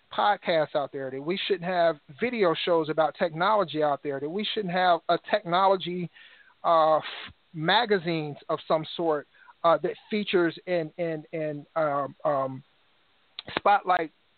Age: 40-59